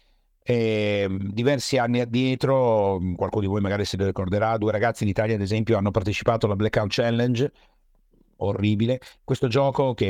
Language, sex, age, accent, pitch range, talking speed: Italian, male, 50-69, native, 100-120 Hz, 150 wpm